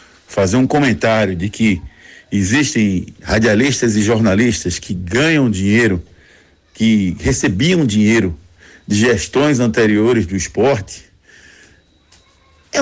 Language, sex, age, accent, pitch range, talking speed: Portuguese, male, 60-79, Brazilian, 95-150 Hz, 100 wpm